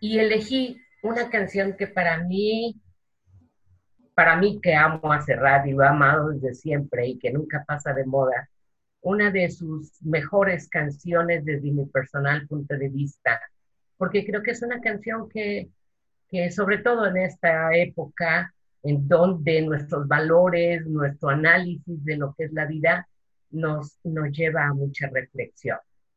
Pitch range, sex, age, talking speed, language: 150-190 Hz, female, 40-59, 150 wpm, Spanish